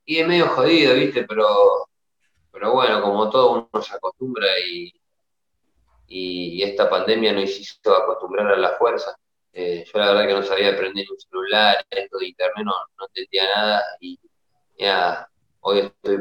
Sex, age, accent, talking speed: male, 20-39, Argentinian, 165 wpm